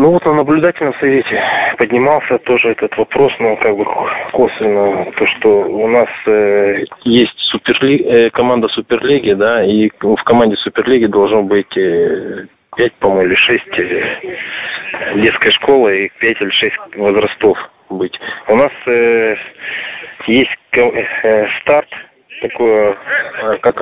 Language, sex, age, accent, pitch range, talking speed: Russian, male, 20-39, native, 105-150 Hz, 125 wpm